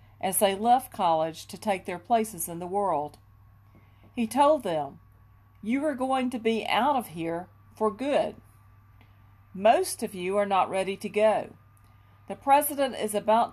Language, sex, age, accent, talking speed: English, female, 50-69, American, 160 wpm